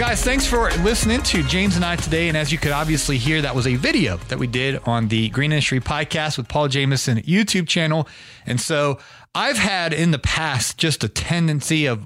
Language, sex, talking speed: English, male, 215 wpm